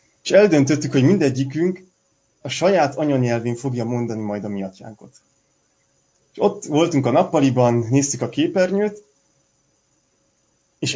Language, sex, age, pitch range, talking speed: Hungarian, male, 30-49, 120-145 Hz, 110 wpm